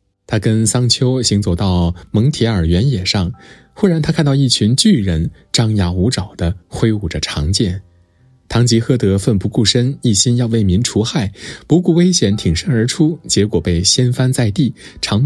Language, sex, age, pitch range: Chinese, male, 20-39, 95-125 Hz